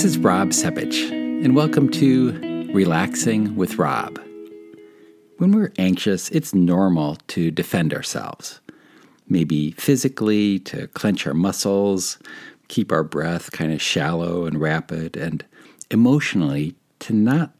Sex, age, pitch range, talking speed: male, 50-69, 85-130 Hz, 125 wpm